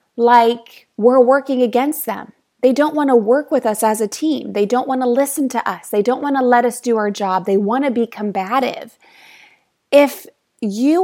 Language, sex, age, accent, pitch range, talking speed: English, female, 20-39, American, 225-290 Hz, 205 wpm